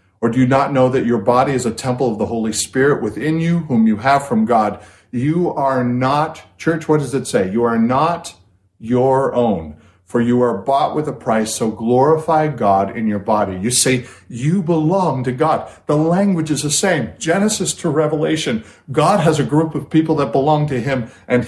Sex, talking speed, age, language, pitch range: male, 205 wpm, 50-69, English, 100-150 Hz